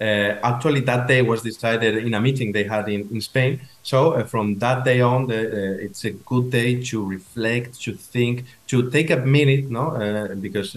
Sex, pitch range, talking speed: male, 105-125 Hz, 205 wpm